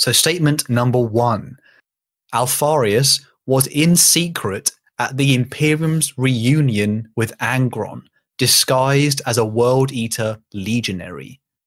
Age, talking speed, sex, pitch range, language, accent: 30-49, 105 wpm, male, 115-145 Hz, English, British